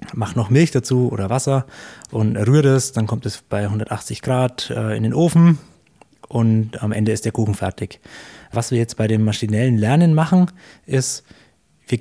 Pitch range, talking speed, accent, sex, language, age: 115-150 Hz, 175 wpm, German, male, German, 20-39